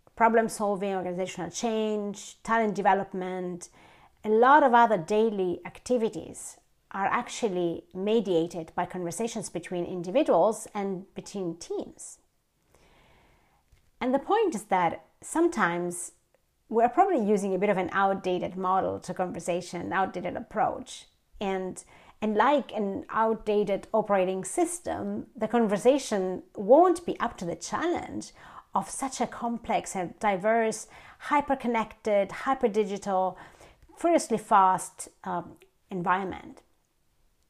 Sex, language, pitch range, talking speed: female, English, 185-245 Hz, 110 wpm